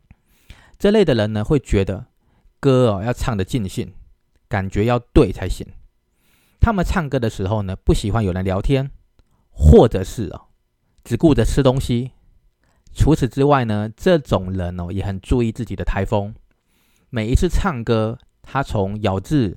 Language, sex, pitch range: Chinese, male, 95-125 Hz